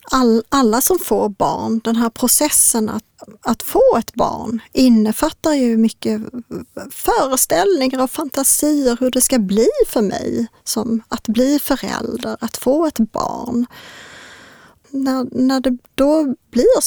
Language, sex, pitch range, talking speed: Swedish, female, 225-255 Hz, 135 wpm